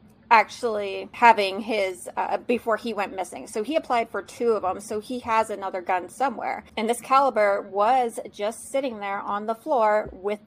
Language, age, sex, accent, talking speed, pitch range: English, 30-49, female, American, 185 wpm, 200-250 Hz